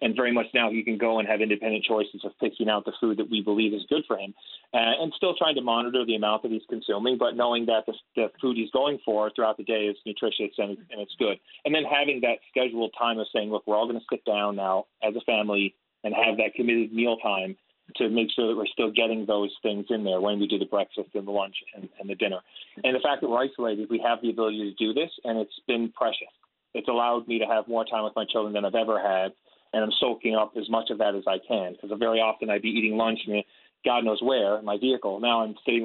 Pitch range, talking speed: 105-120 Hz, 265 wpm